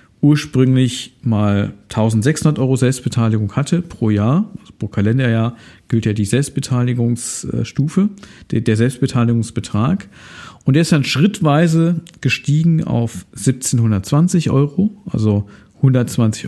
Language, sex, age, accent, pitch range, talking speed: German, male, 50-69, German, 110-140 Hz, 100 wpm